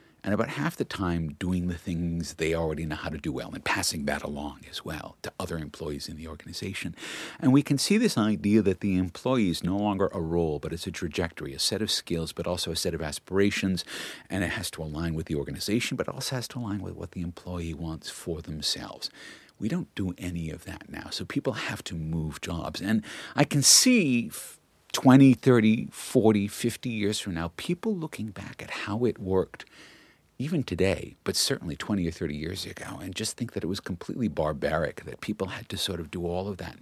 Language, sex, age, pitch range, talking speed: English, male, 50-69, 85-115 Hz, 220 wpm